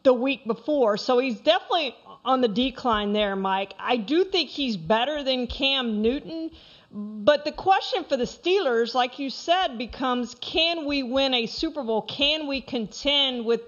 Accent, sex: American, female